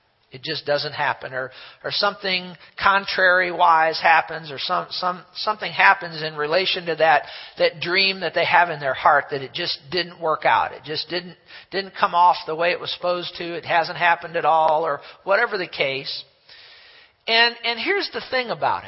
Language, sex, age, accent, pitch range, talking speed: English, male, 50-69, American, 165-220 Hz, 180 wpm